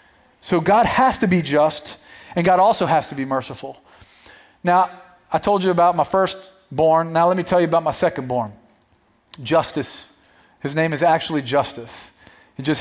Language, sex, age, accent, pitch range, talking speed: English, male, 30-49, American, 130-180 Hz, 170 wpm